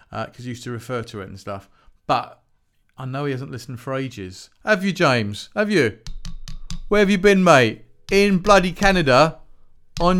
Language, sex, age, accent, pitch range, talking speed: English, male, 40-59, British, 110-150 Hz, 190 wpm